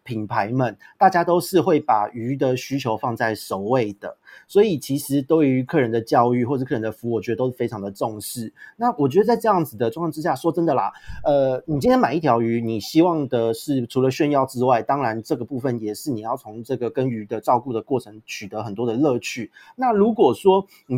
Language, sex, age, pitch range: Chinese, male, 40-59, 115-150 Hz